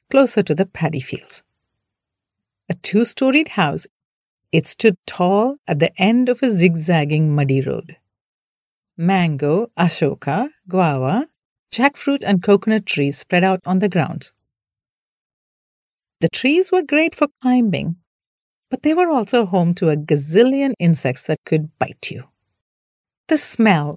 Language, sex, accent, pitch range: English, female, Indian, 145-240 Hz